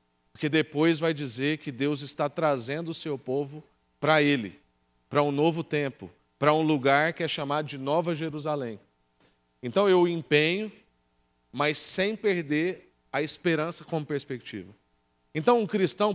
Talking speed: 145 wpm